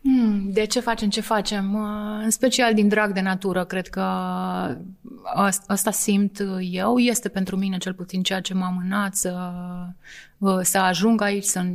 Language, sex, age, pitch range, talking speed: Romanian, female, 30-49, 185-205 Hz, 155 wpm